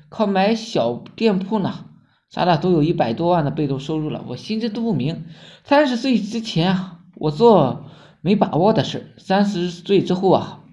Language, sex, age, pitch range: Chinese, male, 20-39, 170-235 Hz